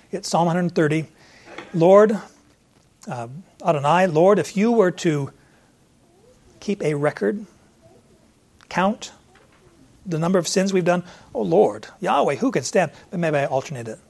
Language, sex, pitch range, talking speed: English, male, 155-200 Hz, 140 wpm